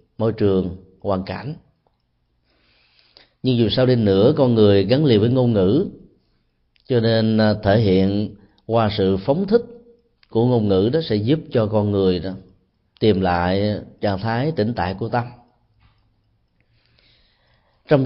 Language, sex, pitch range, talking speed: Vietnamese, male, 100-130 Hz, 145 wpm